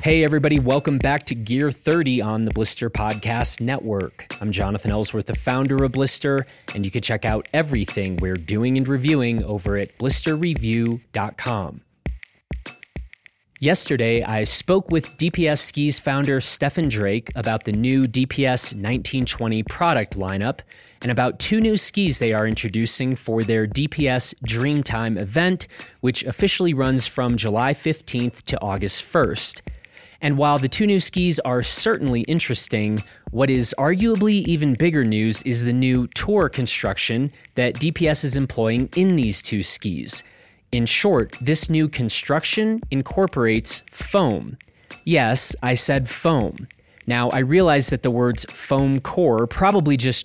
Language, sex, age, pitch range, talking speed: English, male, 30-49, 110-145 Hz, 140 wpm